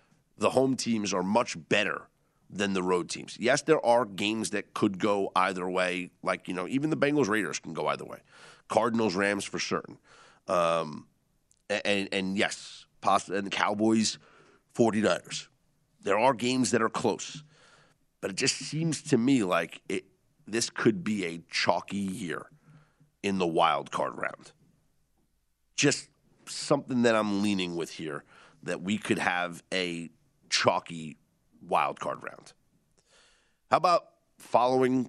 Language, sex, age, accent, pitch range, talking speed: English, male, 40-59, American, 90-130 Hz, 150 wpm